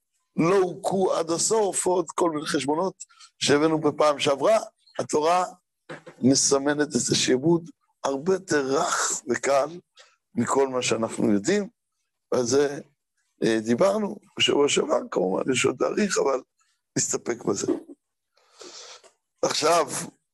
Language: Hebrew